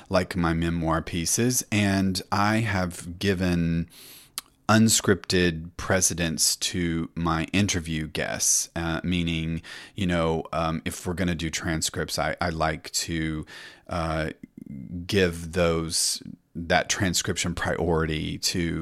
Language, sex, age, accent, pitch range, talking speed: English, male, 30-49, American, 85-105 Hz, 115 wpm